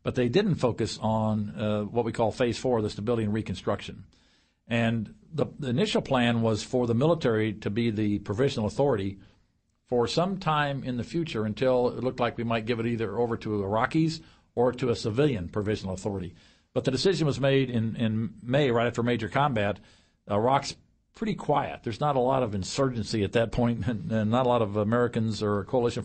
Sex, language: male, English